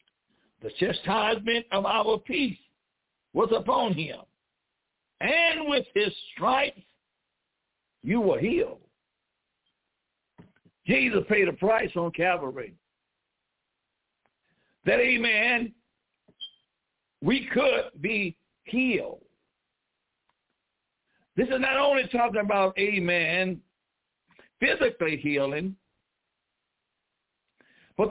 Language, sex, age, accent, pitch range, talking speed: English, male, 60-79, American, 185-255 Hz, 80 wpm